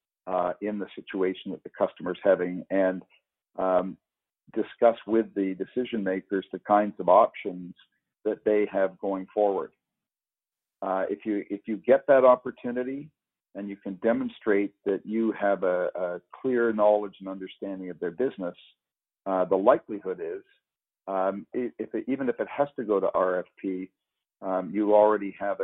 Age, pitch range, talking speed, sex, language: 50-69, 90-105 Hz, 160 wpm, male, English